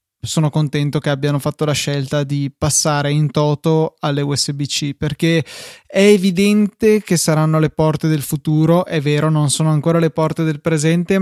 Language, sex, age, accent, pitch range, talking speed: Italian, male, 20-39, native, 145-170 Hz, 165 wpm